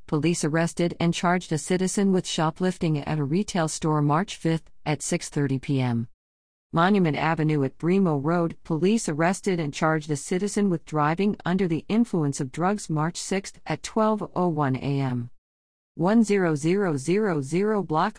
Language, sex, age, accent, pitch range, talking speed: English, female, 50-69, American, 150-200 Hz, 140 wpm